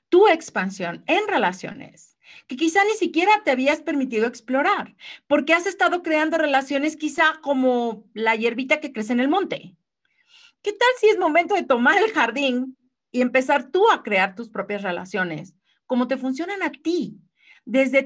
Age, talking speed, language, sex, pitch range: 40-59, 165 wpm, English, female, 210-340 Hz